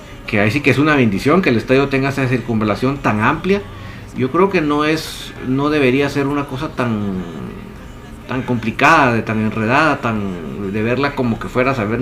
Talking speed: 190 wpm